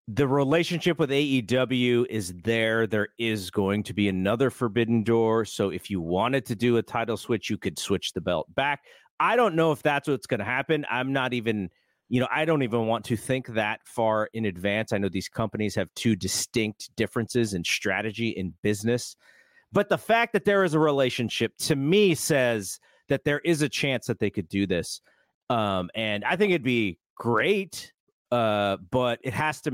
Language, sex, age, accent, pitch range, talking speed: English, male, 40-59, American, 105-140 Hz, 200 wpm